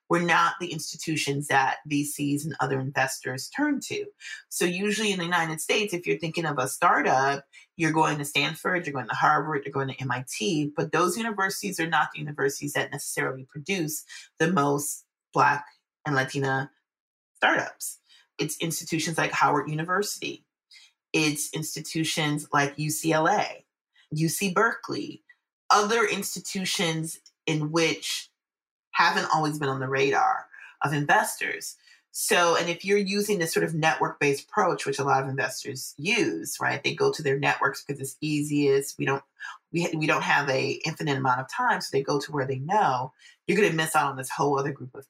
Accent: American